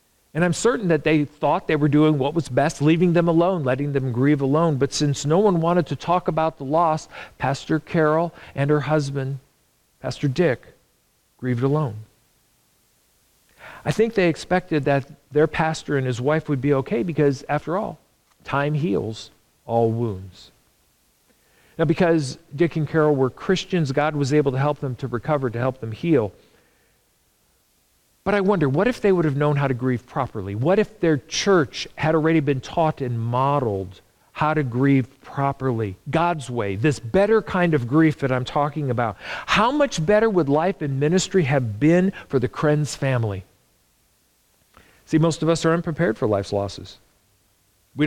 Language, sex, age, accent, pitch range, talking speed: English, male, 50-69, American, 125-160 Hz, 170 wpm